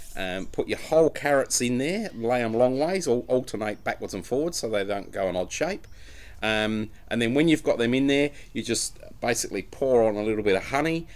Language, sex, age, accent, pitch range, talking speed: English, male, 40-59, British, 100-130 Hz, 225 wpm